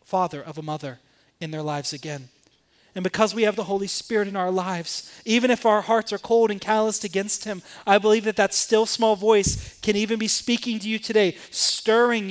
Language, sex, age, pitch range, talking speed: English, male, 30-49, 195-235 Hz, 210 wpm